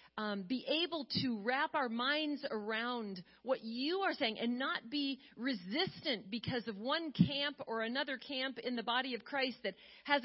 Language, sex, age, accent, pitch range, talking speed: English, female, 40-59, American, 225-285 Hz, 175 wpm